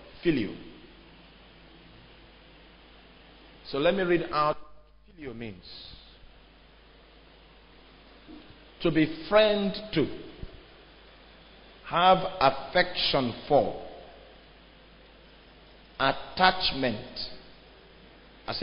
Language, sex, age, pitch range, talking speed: English, male, 50-69, 125-175 Hz, 60 wpm